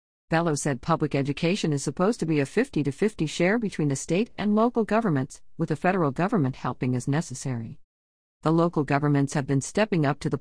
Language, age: English, 50-69